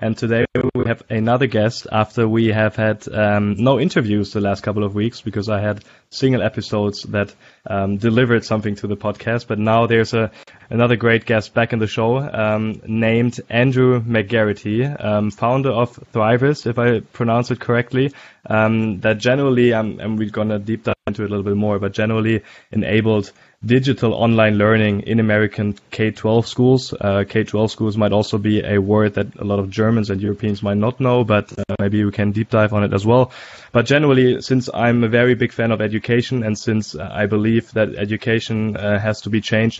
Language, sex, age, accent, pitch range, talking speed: English, male, 20-39, German, 105-115 Hz, 195 wpm